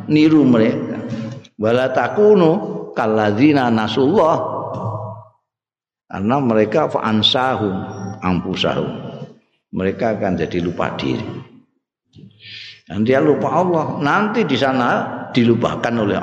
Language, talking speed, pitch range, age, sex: Indonesian, 80 wpm, 95-135 Hz, 50-69, male